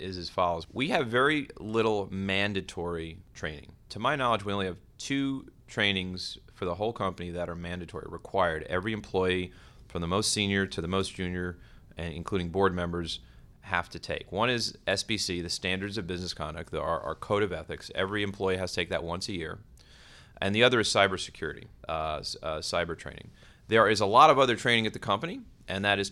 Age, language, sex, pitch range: 30-49, English, male, 85-105 Hz